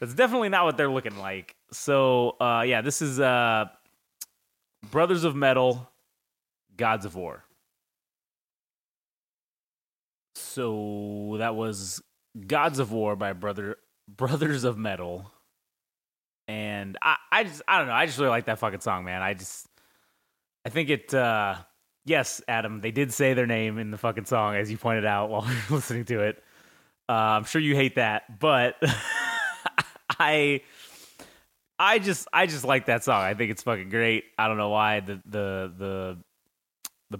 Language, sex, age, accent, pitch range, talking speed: English, male, 30-49, American, 105-130 Hz, 160 wpm